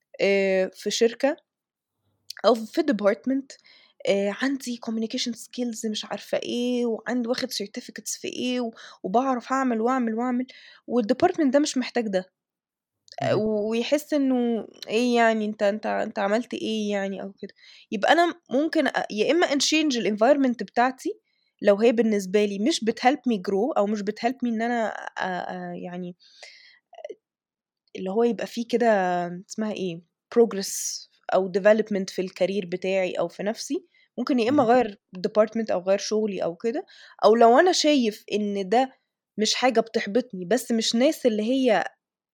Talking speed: 140 wpm